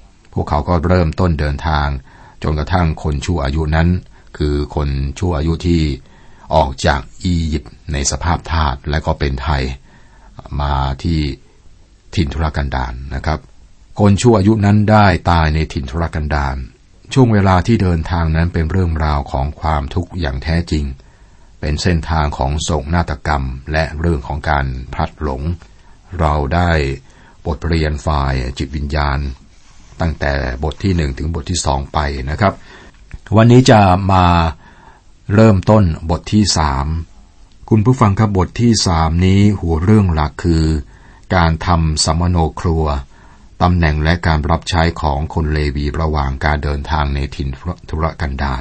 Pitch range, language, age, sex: 75-90 Hz, Thai, 60-79, male